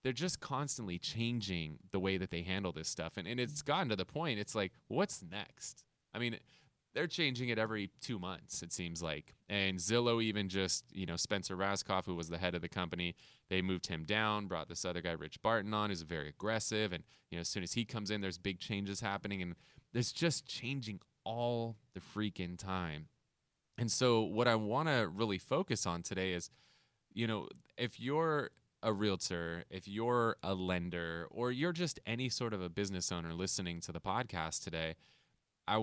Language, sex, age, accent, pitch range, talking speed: English, male, 20-39, American, 90-120 Hz, 200 wpm